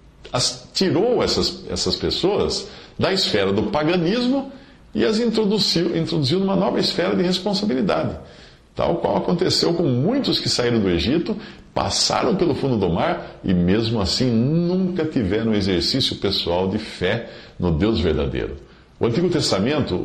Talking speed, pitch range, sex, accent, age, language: 140 wpm, 95-155 Hz, male, Brazilian, 50-69, Portuguese